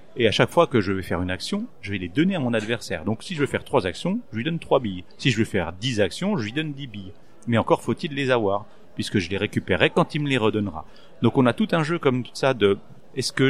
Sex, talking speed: male, 290 wpm